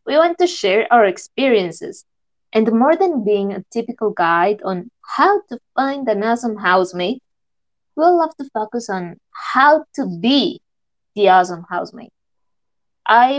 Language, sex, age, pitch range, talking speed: English, female, 20-39, 200-265 Hz, 145 wpm